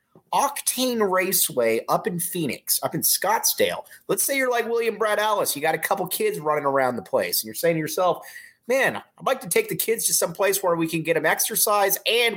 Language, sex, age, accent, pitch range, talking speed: English, male, 30-49, American, 135-220 Hz, 225 wpm